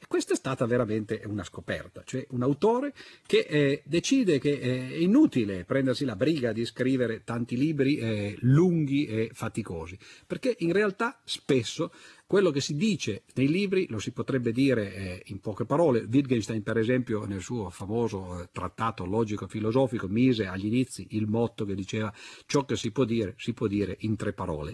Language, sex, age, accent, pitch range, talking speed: Italian, male, 50-69, native, 105-150 Hz, 170 wpm